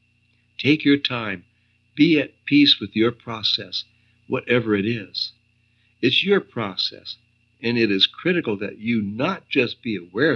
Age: 60-79